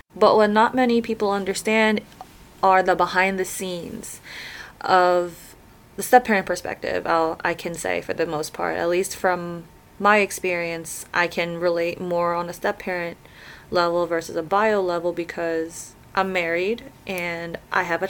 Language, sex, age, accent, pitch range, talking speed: English, female, 20-39, American, 170-205 Hz, 155 wpm